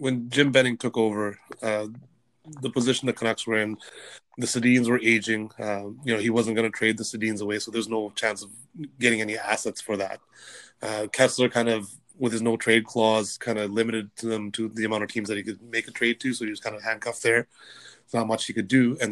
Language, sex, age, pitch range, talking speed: English, male, 30-49, 110-125 Hz, 240 wpm